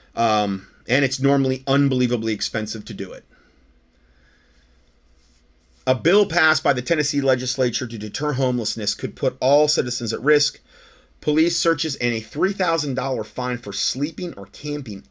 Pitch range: 100-130 Hz